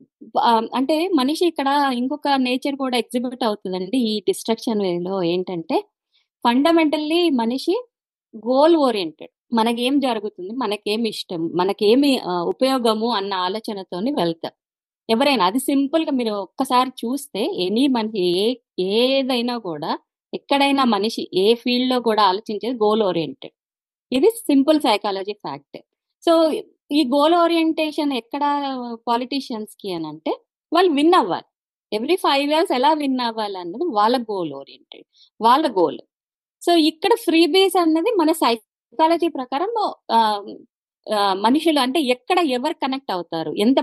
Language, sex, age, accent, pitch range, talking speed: Telugu, female, 20-39, native, 220-320 Hz, 115 wpm